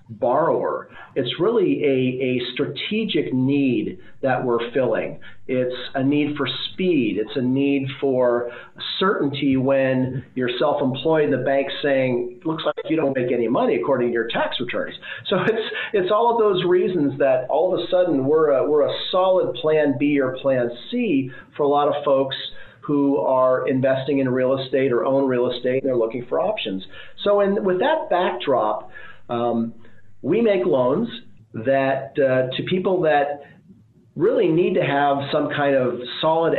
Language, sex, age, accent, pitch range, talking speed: English, male, 40-59, American, 125-155 Hz, 170 wpm